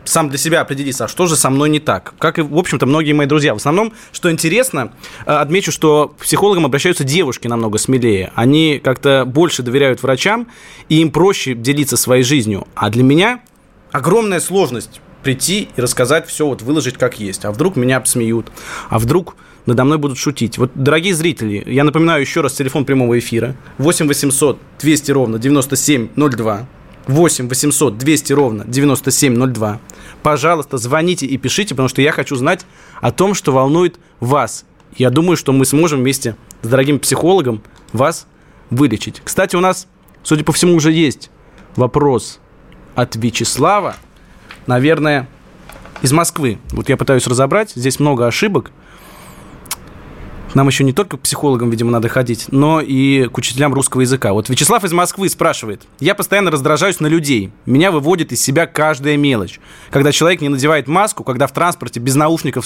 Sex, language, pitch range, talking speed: male, Russian, 125-160 Hz, 165 wpm